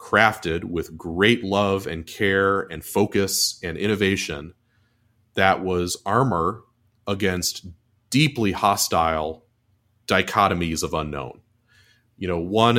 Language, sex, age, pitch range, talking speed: English, male, 30-49, 90-110 Hz, 105 wpm